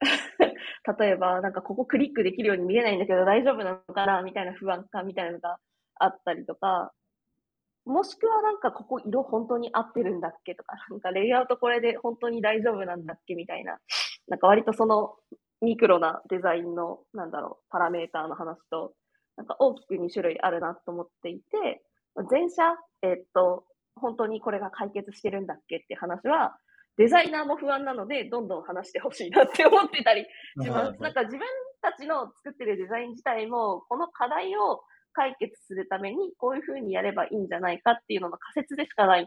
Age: 20-39